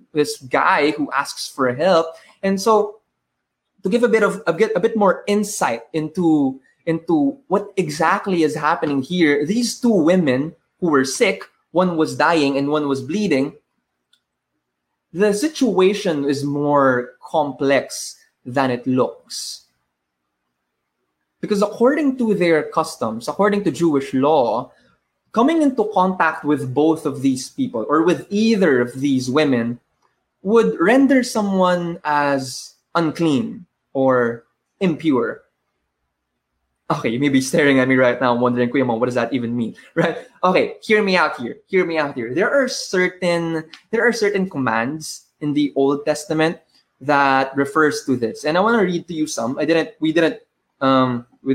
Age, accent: 20-39, Filipino